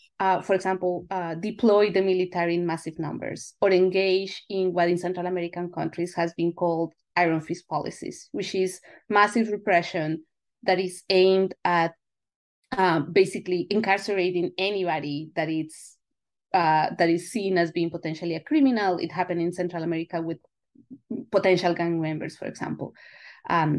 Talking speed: 150 wpm